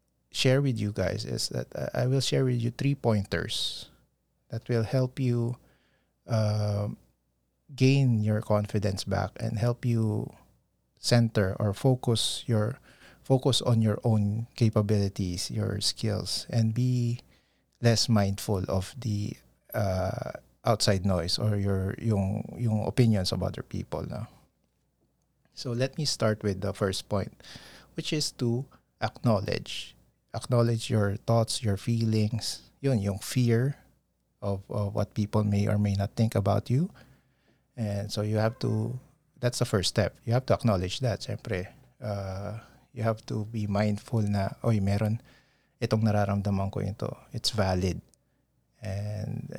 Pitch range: 100-125 Hz